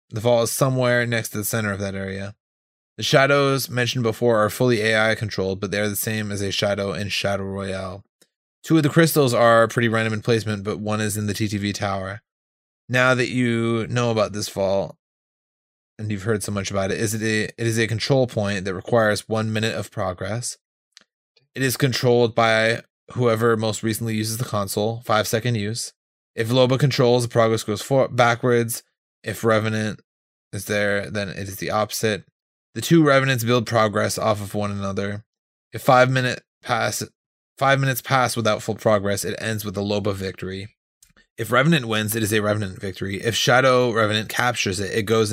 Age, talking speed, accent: 20-39, 190 wpm, American